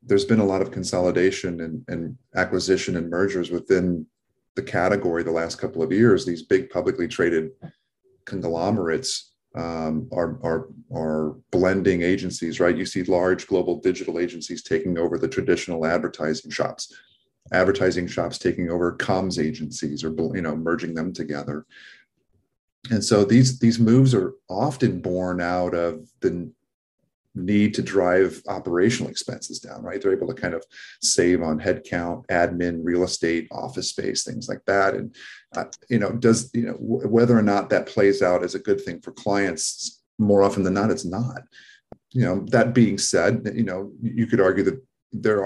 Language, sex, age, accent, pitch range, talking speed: English, male, 40-59, American, 85-100 Hz, 165 wpm